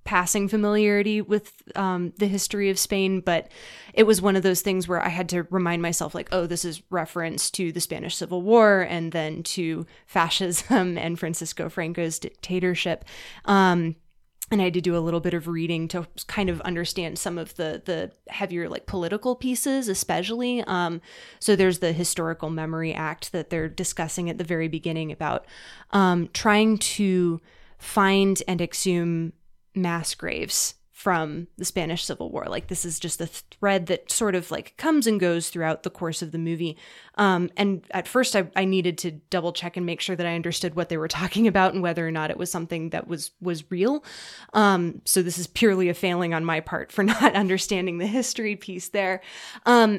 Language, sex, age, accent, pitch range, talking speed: English, female, 20-39, American, 170-195 Hz, 190 wpm